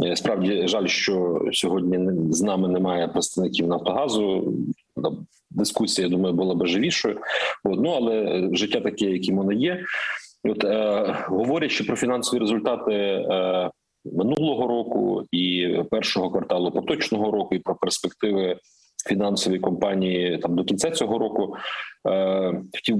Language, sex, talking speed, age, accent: Ukrainian, male, 125 wpm, 40-59, native